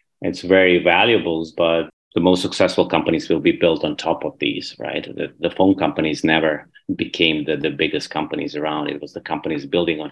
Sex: male